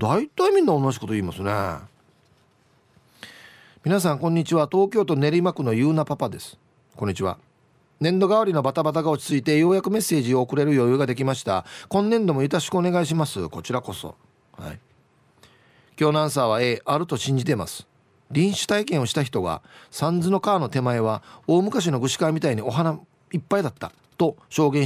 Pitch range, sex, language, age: 130-175 Hz, male, Japanese, 40-59